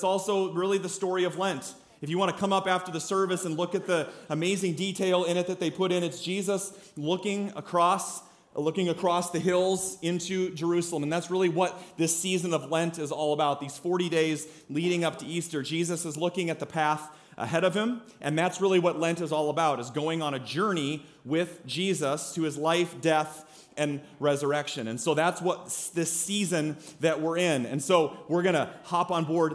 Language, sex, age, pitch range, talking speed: English, male, 30-49, 155-190 Hz, 205 wpm